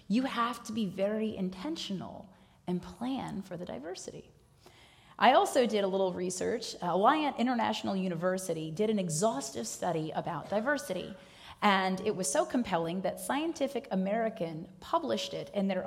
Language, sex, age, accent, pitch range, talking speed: English, female, 30-49, American, 175-225 Hz, 145 wpm